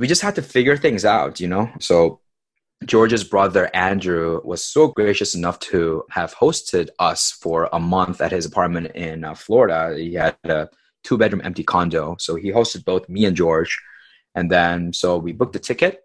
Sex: male